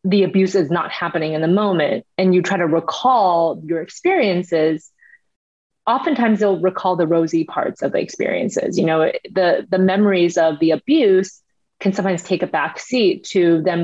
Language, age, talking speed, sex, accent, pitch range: English, 30-49, 170 wpm, female, American, 165-200 Hz